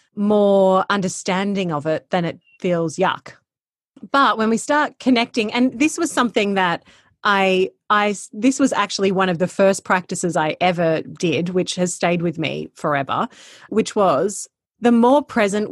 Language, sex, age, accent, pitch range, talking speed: English, female, 30-49, Australian, 180-225 Hz, 160 wpm